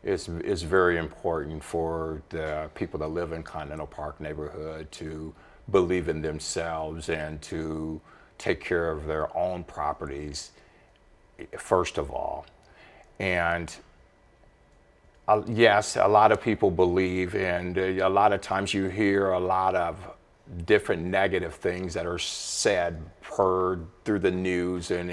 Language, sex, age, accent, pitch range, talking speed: English, male, 50-69, American, 80-95 Hz, 130 wpm